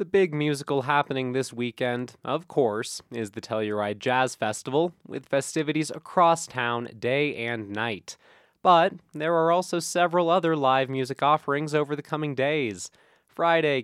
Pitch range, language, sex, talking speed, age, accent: 120-160 Hz, English, male, 150 wpm, 20-39, American